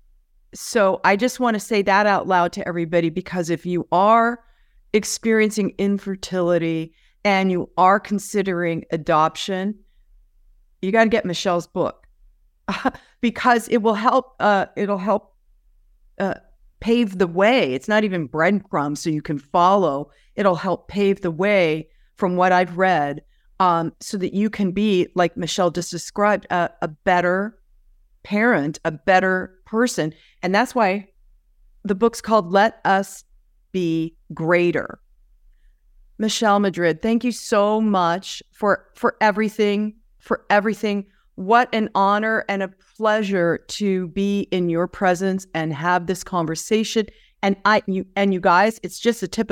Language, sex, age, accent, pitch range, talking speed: English, female, 50-69, American, 175-210 Hz, 145 wpm